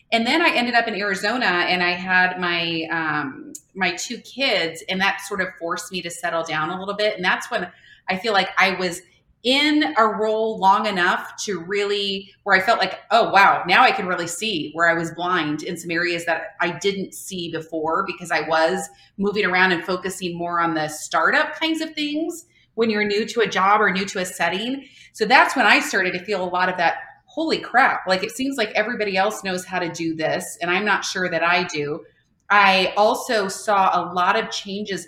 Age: 30-49